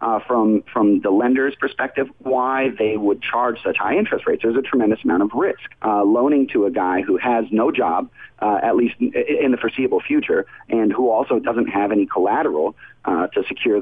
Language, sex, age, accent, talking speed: English, male, 40-59, American, 205 wpm